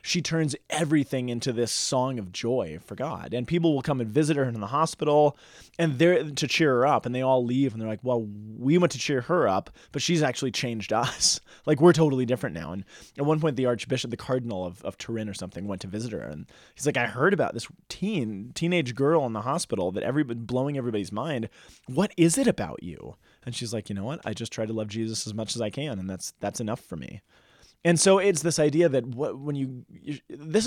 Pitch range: 110-150 Hz